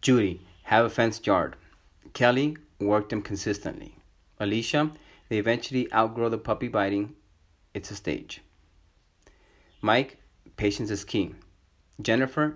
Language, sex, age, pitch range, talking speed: English, male, 30-49, 100-125 Hz, 115 wpm